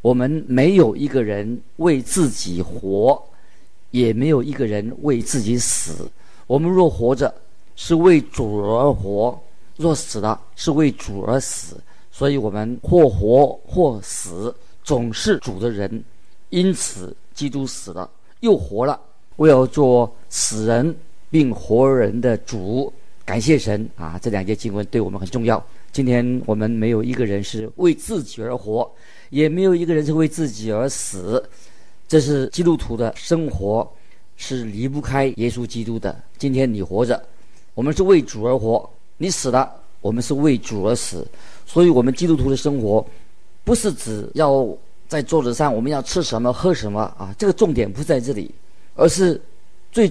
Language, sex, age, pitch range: Chinese, male, 50-69, 110-150 Hz